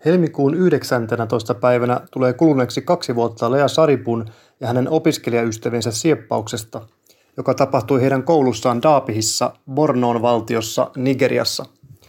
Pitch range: 125-155 Hz